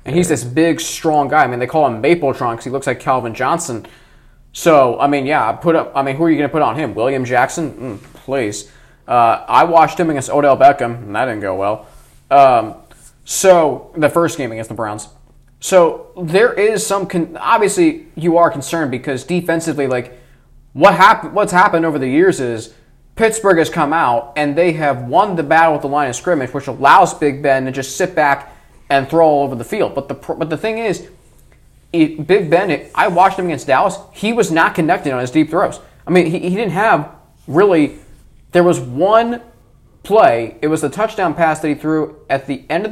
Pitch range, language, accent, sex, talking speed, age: 130-175 Hz, English, American, male, 215 wpm, 20-39